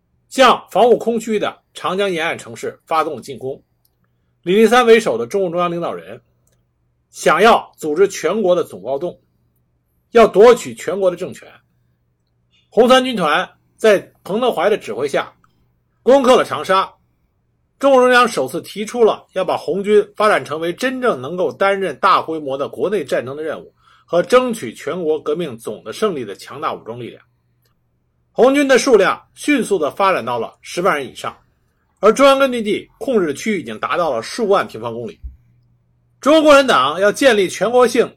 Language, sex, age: Chinese, male, 50-69